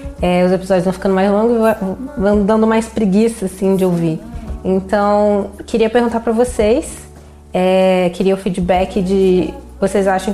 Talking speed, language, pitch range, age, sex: 155 wpm, Portuguese, 185-225 Hz, 20-39, female